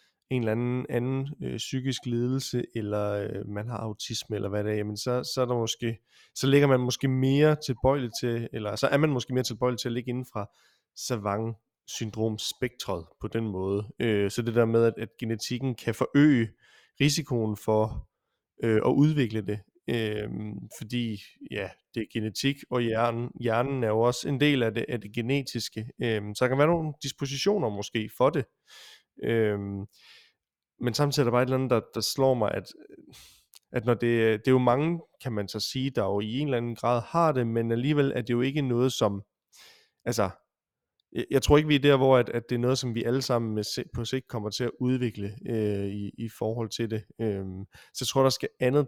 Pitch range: 110-130 Hz